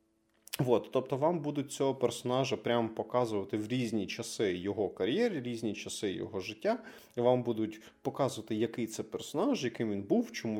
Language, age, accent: Russian, 20-39, native